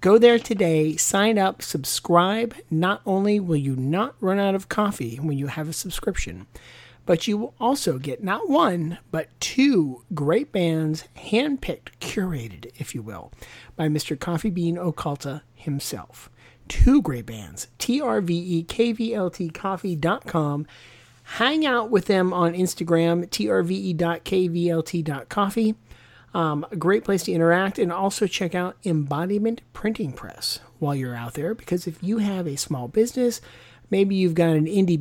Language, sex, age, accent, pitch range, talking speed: English, male, 40-59, American, 150-195 Hz, 140 wpm